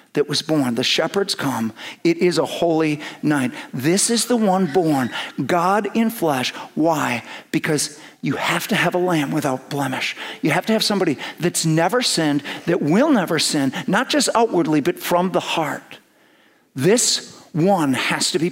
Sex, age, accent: male, 50-69, American